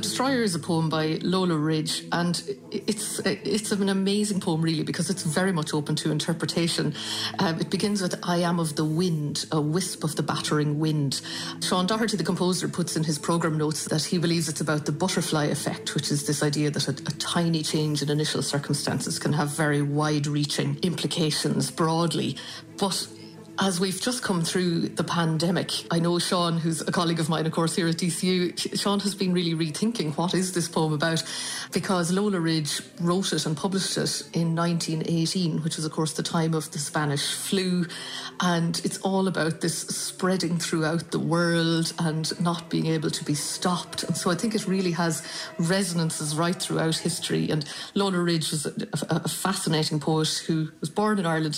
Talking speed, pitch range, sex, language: 190 wpm, 155-185 Hz, female, English